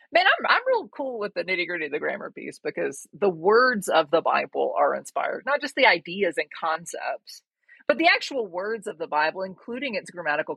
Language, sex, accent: English, female, American